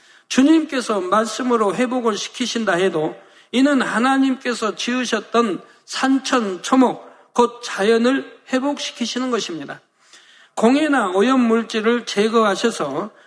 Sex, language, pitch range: male, Korean, 200-250 Hz